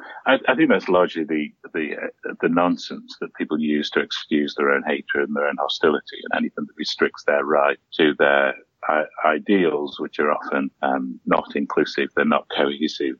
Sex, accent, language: male, British, English